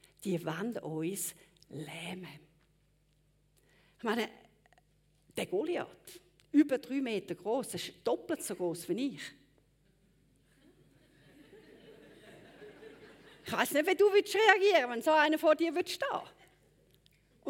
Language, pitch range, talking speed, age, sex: German, 245-360 Hz, 115 wpm, 50-69, female